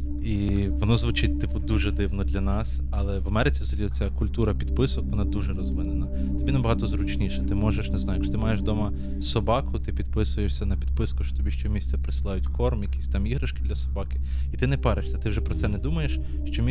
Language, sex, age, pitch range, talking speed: Ukrainian, male, 20-39, 65-95 Hz, 200 wpm